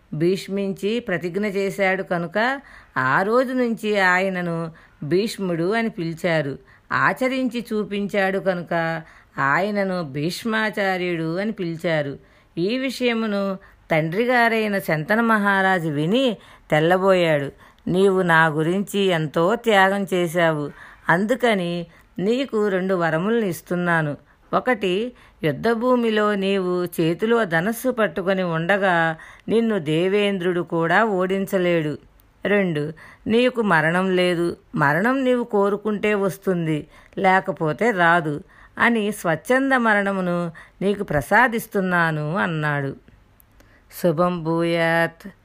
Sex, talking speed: female, 85 wpm